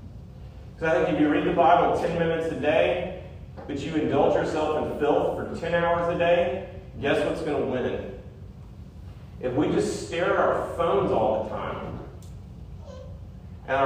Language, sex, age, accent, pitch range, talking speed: English, male, 40-59, American, 105-165 Hz, 175 wpm